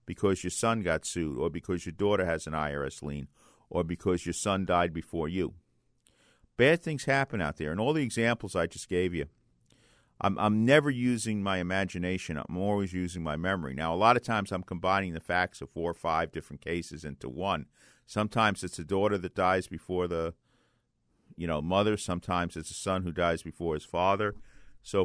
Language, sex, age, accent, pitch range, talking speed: English, male, 50-69, American, 85-105 Hz, 195 wpm